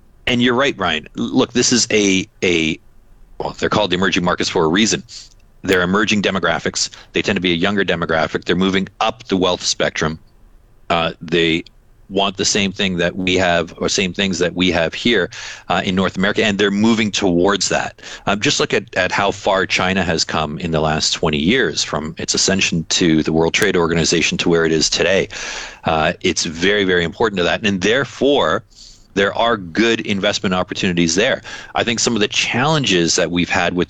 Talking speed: 200 wpm